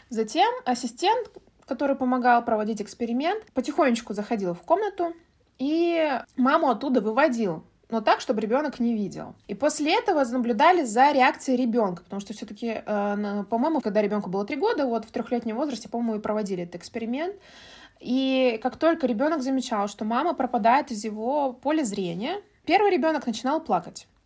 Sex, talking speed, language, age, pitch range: female, 150 wpm, Russian, 20-39, 220-300 Hz